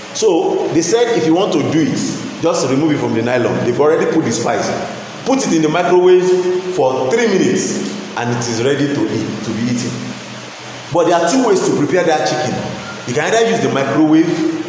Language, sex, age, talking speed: English, male, 40-59, 210 wpm